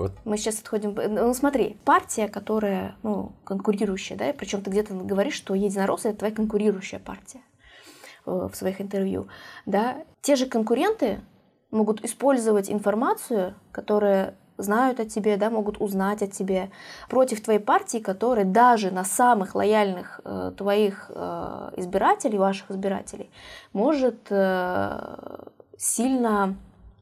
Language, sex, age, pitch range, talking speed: Russian, female, 20-39, 195-230 Hz, 120 wpm